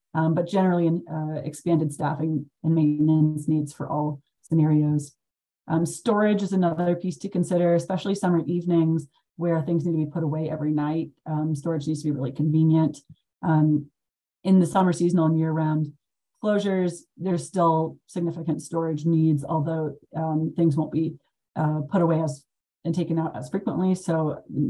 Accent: American